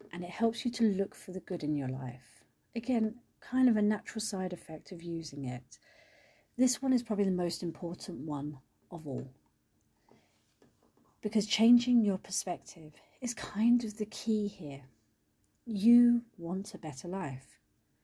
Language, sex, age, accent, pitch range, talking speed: English, female, 40-59, British, 150-215 Hz, 155 wpm